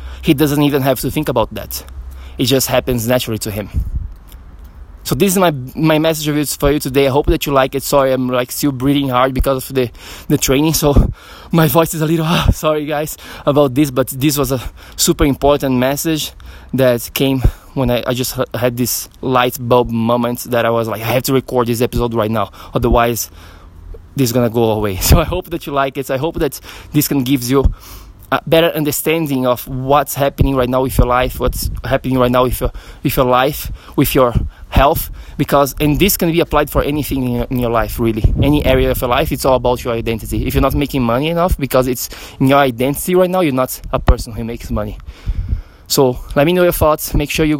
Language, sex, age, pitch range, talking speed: English, male, 20-39, 115-145 Hz, 220 wpm